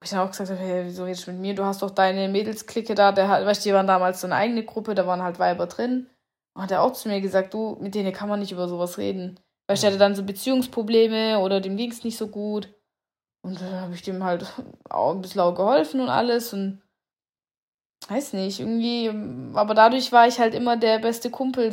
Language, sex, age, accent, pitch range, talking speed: German, female, 10-29, German, 195-250 Hz, 240 wpm